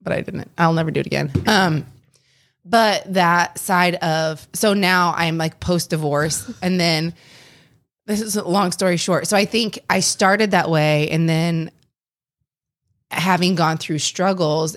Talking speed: 160 wpm